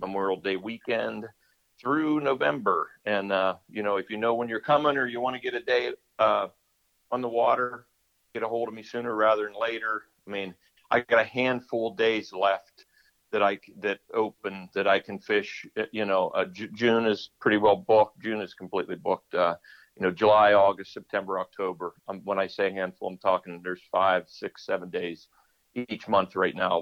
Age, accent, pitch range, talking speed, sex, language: 50-69, American, 95-125 Hz, 195 wpm, male, English